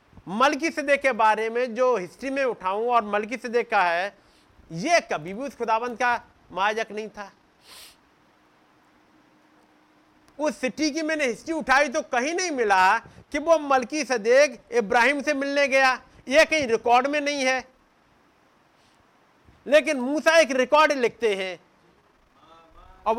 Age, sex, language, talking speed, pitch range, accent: 50-69, male, Hindi, 135 wpm, 220-295 Hz, native